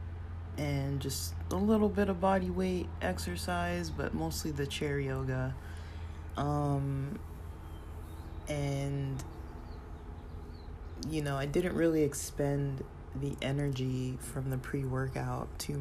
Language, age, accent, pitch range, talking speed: English, 20-39, American, 85-140 Hz, 105 wpm